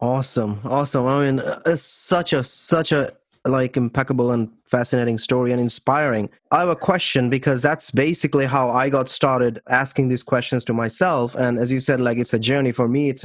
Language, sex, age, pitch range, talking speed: English, male, 20-39, 115-135 Hz, 195 wpm